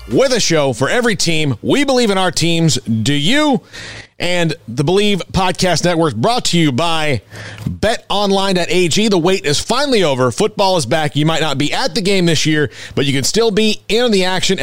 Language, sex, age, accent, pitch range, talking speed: English, male, 30-49, American, 140-195 Hz, 200 wpm